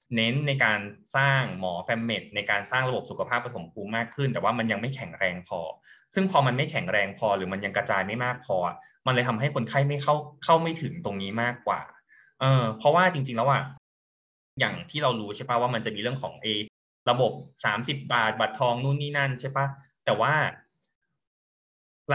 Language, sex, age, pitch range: Thai, male, 20-39, 110-140 Hz